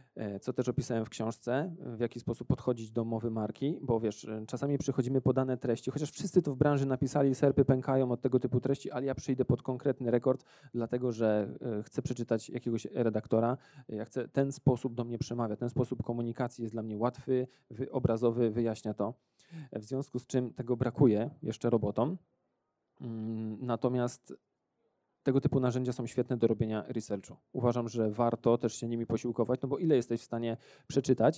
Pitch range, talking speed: 115-130 Hz, 170 wpm